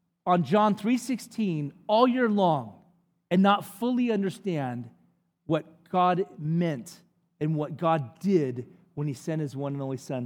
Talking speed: 145 wpm